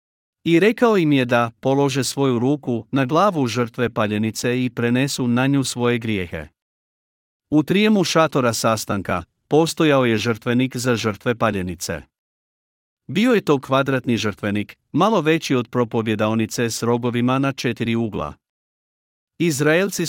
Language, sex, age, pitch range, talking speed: Croatian, male, 50-69, 115-135 Hz, 130 wpm